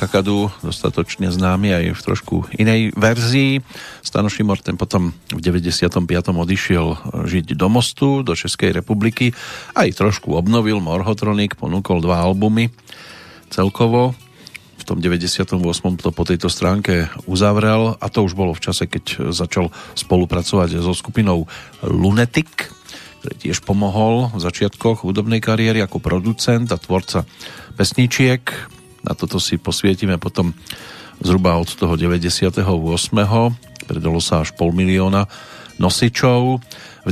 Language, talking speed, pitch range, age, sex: Slovak, 125 wpm, 90-110 Hz, 40-59, male